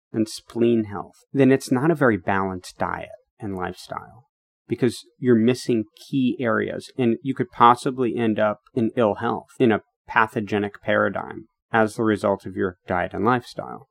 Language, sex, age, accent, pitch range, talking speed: English, male, 30-49, American, 105-125 Hz, 165 wpm